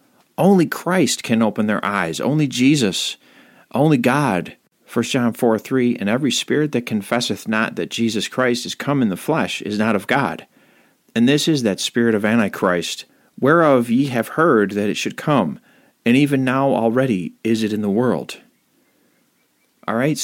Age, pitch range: 40-59, 110-135 Hz